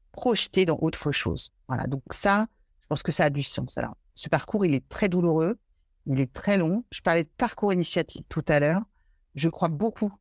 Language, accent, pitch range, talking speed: French, French, 140-180 Hz, 210 wpm